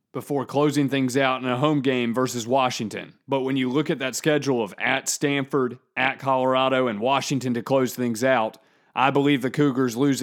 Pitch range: 120-140 Hz